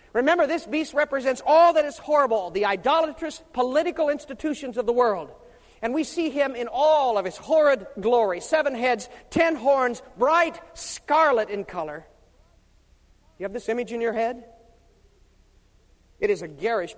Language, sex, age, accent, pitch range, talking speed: English, male, 40-59, American, 235-305 Hz, 155 wpm